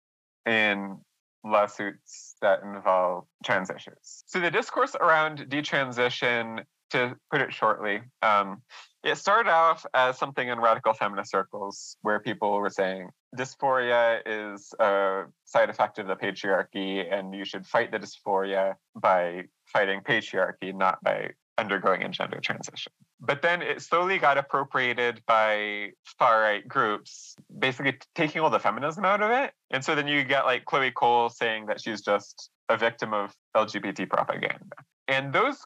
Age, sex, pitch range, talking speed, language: 20-39, male, 105-140 Hz, 145 wpm, English